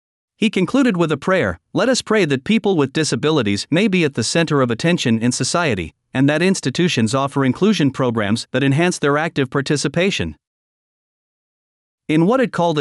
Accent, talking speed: American, 170 wpm